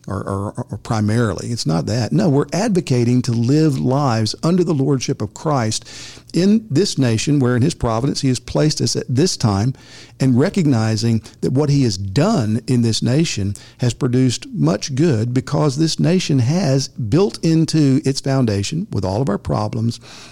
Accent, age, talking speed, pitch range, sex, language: American, 50-69, 170 wpm, 110-140 Hz, male, English